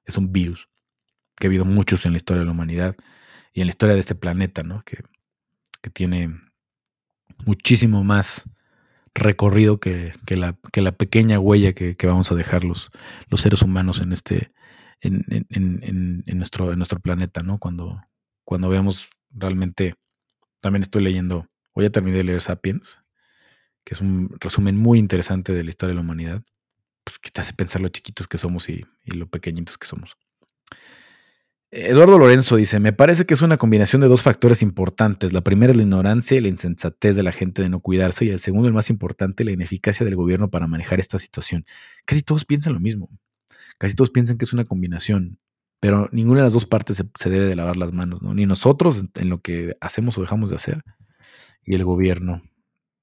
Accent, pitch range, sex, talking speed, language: Mexican, 90-110 Hz, male, 195 wpm, Spanish